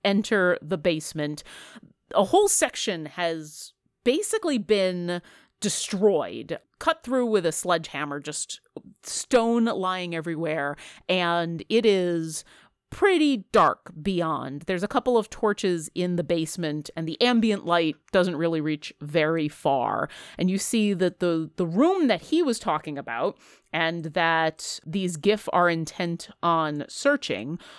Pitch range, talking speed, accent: 160-210 Hz, 135 wpm, American